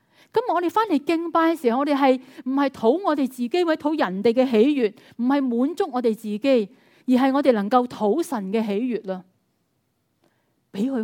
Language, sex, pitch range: Chinese, female, 210-290 Hz